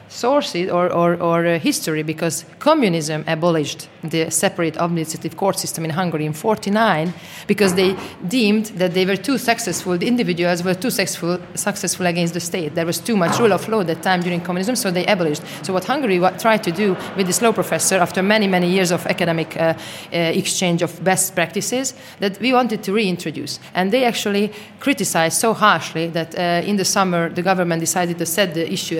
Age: 30-49